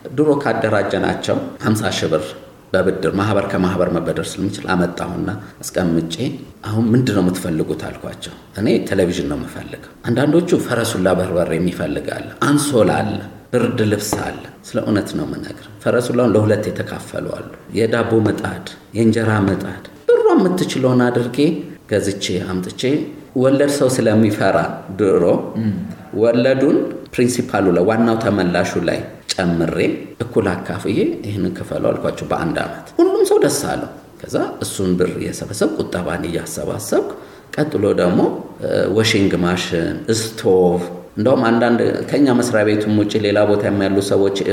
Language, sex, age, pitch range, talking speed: Amharic, male, 50-69, 95-125 Hz, 110 wpm